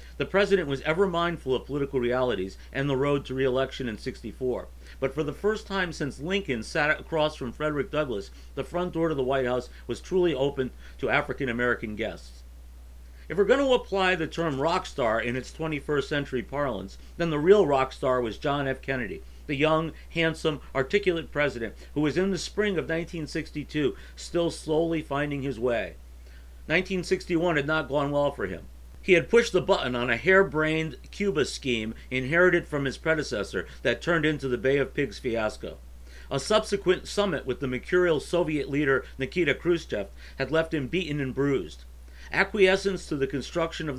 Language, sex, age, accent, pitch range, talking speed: English, male, 50-69, American, 125-165 Hz, 175 wpm